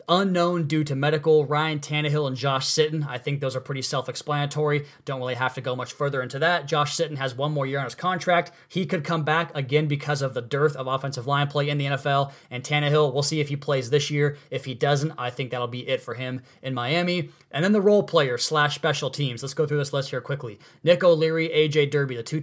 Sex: male